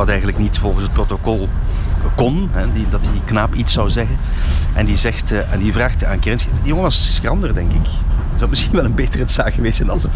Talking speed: 235 wpm